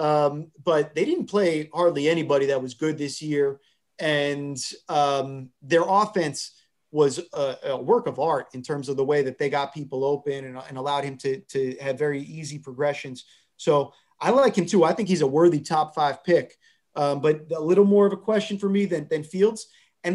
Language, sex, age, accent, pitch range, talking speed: English, male, 30-49, American, 145-185 Hz, 205 wpm